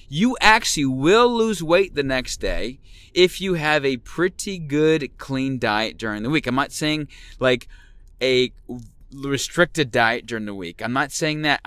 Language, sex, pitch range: English, male, 130-175 Hz